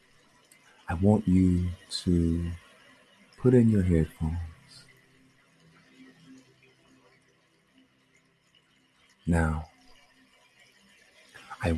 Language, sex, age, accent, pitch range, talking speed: English, male, 50-69, American, 80-125 Hz, 50 wpm